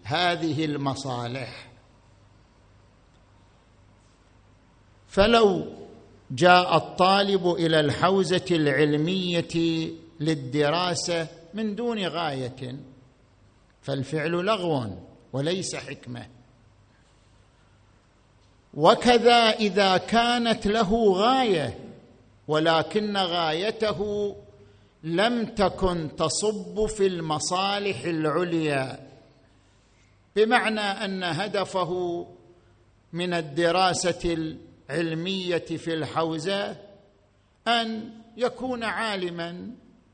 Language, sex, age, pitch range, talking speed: Arabic, male, 50-69, 125-195 Hz, 60 wpm